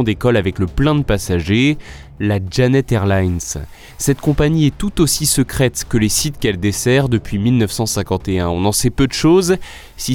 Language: French